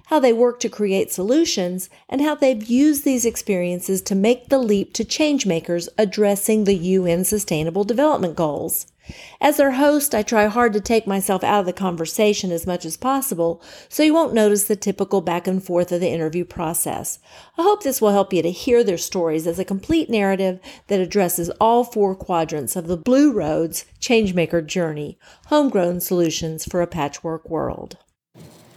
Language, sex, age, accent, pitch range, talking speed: English, female, 50-69, American, 175-235 Hz, 175 wpm